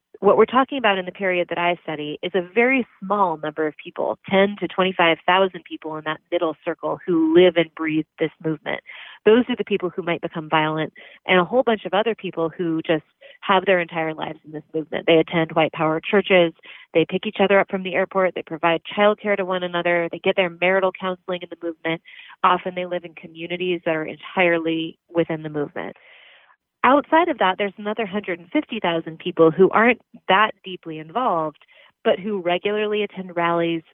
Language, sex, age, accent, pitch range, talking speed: English, female, 30-49, American, 165-195 Hz, 195 wpm